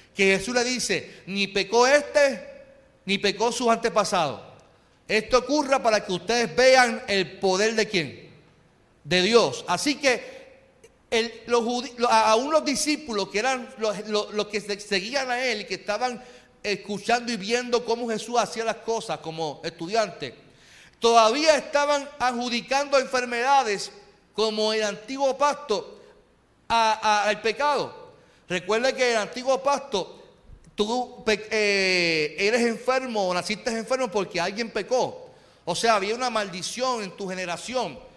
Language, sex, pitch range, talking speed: Spanish, male, 200-250 Hz, 140 wpm